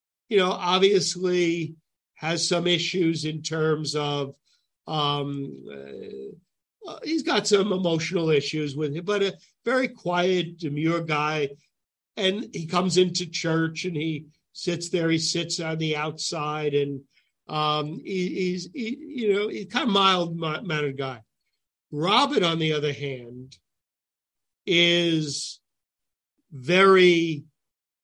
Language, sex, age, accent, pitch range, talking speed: English, male, 50-69, American, 150-180 Hz, 120 wpm